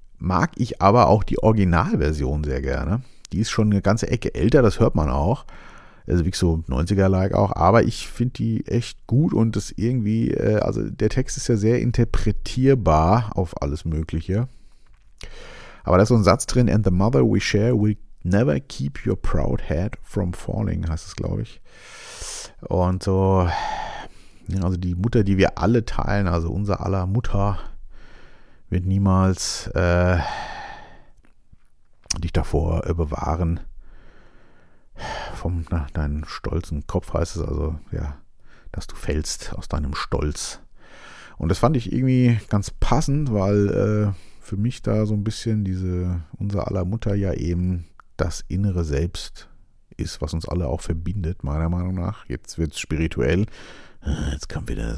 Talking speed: 155 wpm